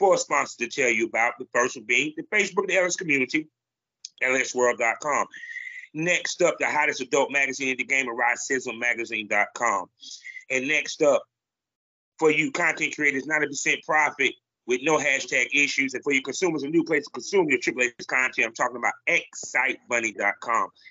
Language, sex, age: English, male, 30-49